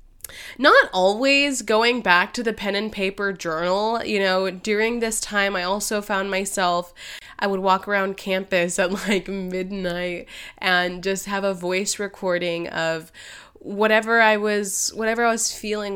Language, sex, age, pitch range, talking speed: English, female, 20-39, 180-215 Hz, 155 wpm